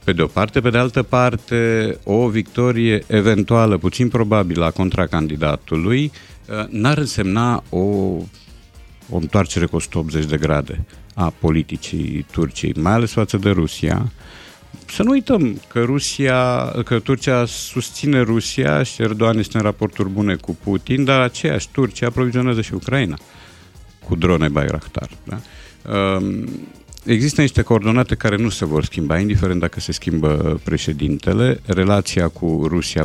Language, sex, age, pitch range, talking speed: Romanian, male, 50-69, 80-115 Hz, 140 wpm